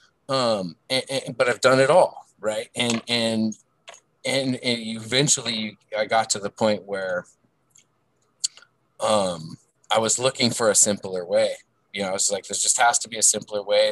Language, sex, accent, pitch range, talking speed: English, male, American, 105-125 Hz, 175 wpm